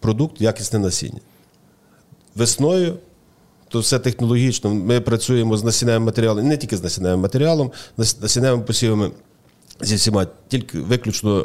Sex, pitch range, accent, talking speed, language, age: male, 105-125 Hz, native, 120 wpm, Ukrainian, 40-59